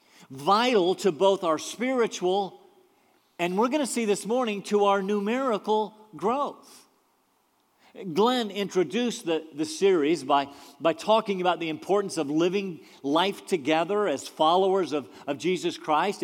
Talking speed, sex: 135 wpm, male